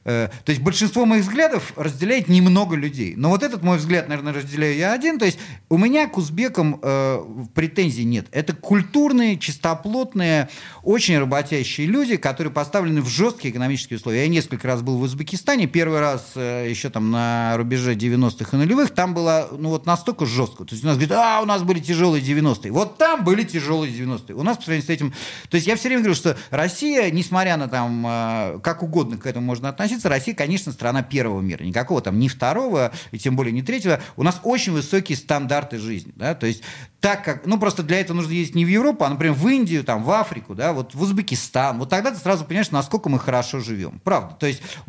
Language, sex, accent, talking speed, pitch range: Russian, male, native, 210 wpm, 130-185 Hz